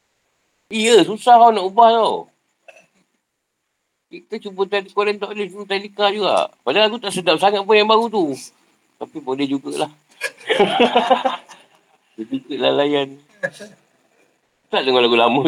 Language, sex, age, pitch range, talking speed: Malay, male, 50-69, 160-220 Hz, 130 wpm